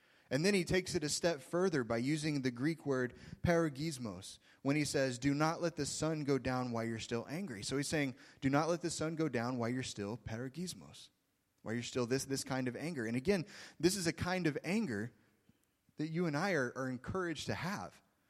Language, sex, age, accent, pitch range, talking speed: English, male, 20-39, American, 115-155 Hz, 220 wpm